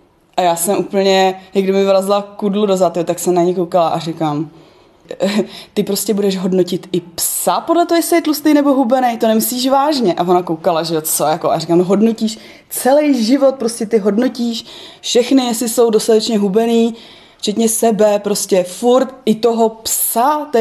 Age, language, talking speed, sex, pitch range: 20-39, Czech, 180 wpm, female, 175-220 Hz